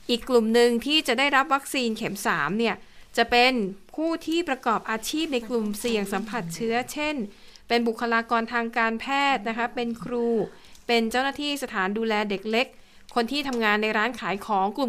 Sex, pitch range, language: female, 200-245 Hz, Thai